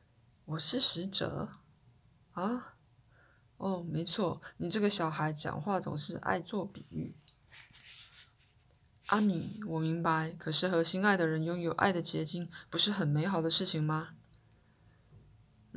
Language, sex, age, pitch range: Chinese, female, 20-39, 160-190 Hz